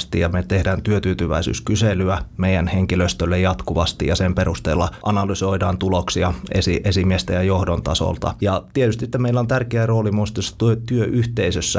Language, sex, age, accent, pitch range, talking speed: Finnish, male, 30-49, native, 90-105 Hz, 125 wpm